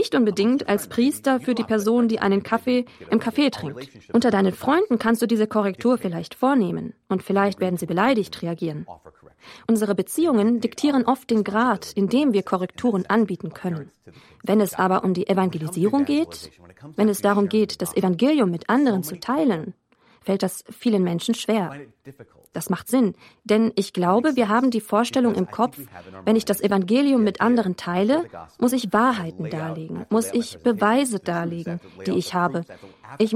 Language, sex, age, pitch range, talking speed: German, female, 20-39, 190-245 Hz, 170 wpm